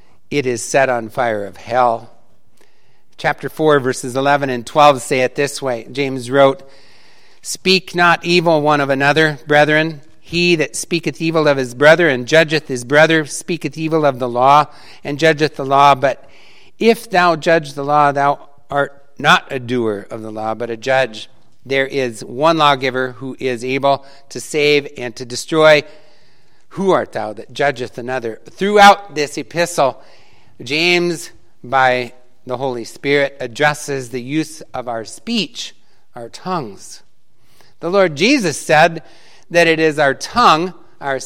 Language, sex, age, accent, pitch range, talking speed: English, male, 60-79, American, 130-160 Hz, 155 wpm